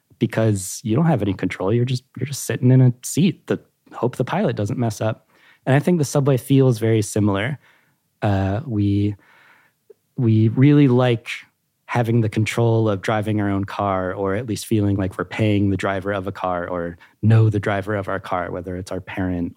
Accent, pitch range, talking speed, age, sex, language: American, 100-125 Hz, 195 wpm, 30-49, male, English